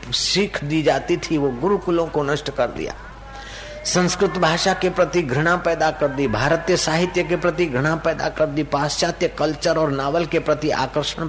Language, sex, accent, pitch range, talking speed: Hindi, male, native, 120-165 Hz, 175 wpm